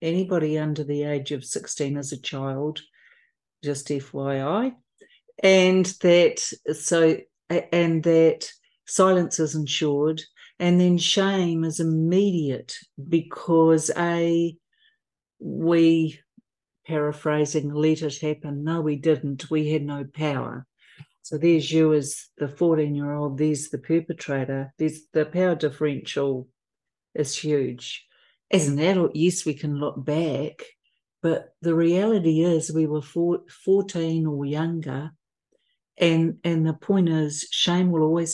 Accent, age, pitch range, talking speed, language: Australian, 60-79, 145-170 Hz, 125 wpm, English